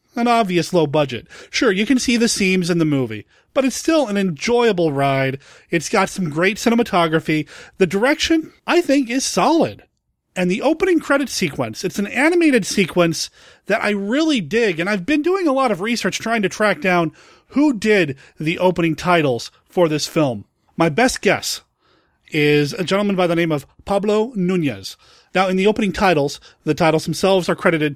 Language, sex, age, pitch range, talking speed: English, male, 30-49, 165-230 Hz, 180 wpm